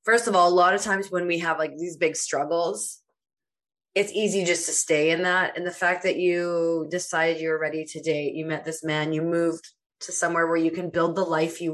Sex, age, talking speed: female, 20-39, 235 wpm